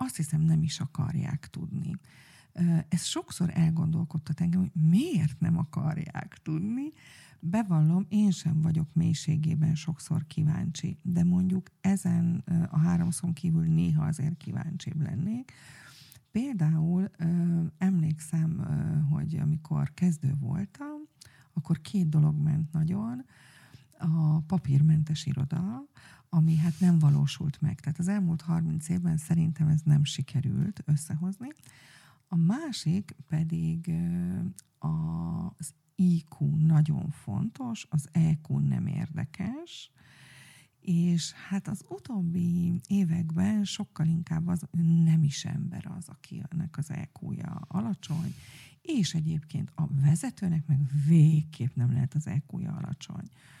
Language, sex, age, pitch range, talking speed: Hungarian, female, 40-59, 155-175 Hz, 110 wpm